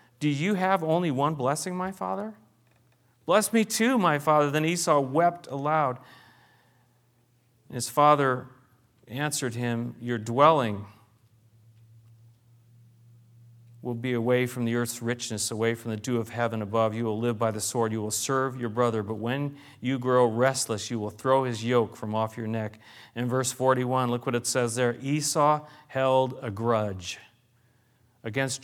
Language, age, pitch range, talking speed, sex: English, 40-59, 120-175 Hz, 155 wpm, male